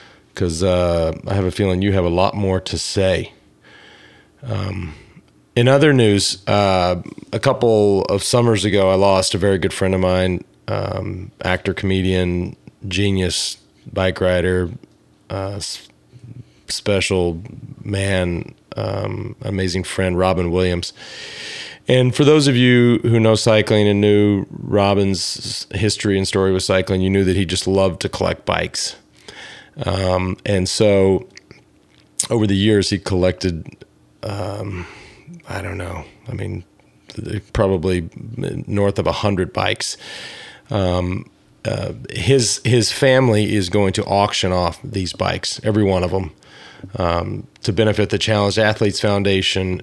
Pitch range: 95-110 Hz